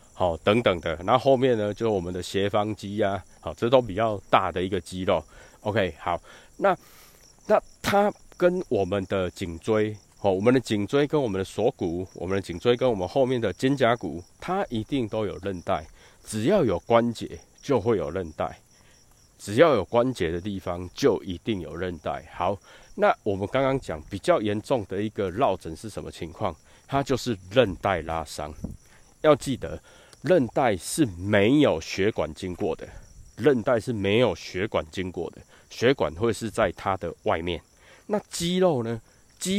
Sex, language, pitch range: male, Chinese, 90-125 Hz